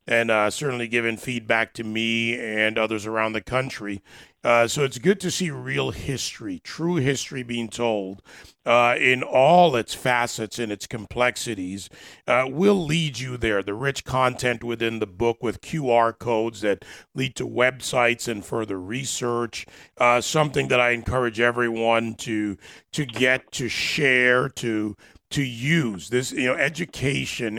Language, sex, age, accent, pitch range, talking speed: English, male, 40-59, American, 115-135 Hz, 155 wpm